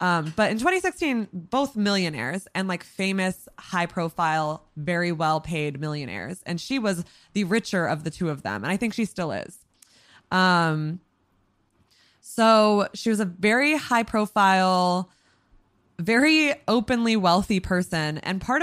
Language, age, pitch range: English, 20-39, 175-225 Hz